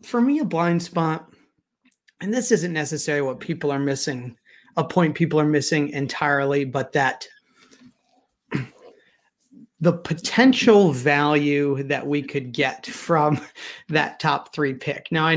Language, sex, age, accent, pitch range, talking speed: English, male, 30-49, American, 145-175 Hz, 135 wpm